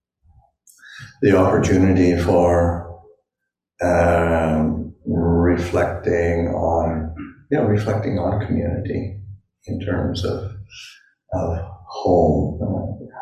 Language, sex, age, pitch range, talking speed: English, male, 60-79, 85-110 Hz, 75 wpm